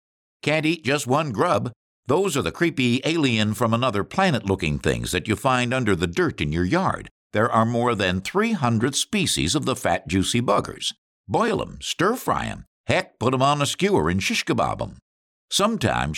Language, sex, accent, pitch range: English, male, American, 100-155 Hz